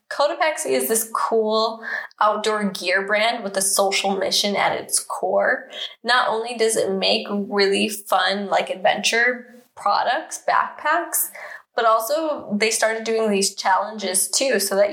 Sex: female